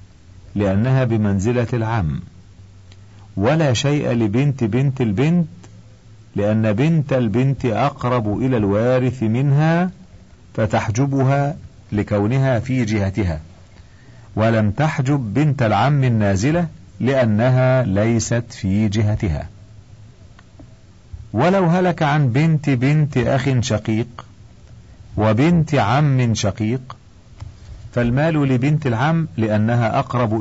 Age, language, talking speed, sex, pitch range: 50-69, Arabic, 85 wpm, male, 105-140 Hz